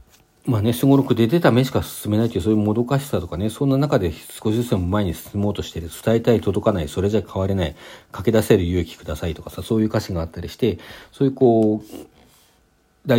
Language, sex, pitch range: Japanese, male, 95-135 Hz